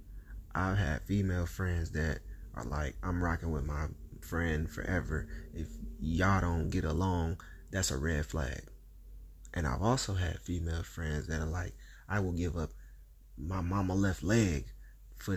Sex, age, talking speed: male, 30-49, 155 wpm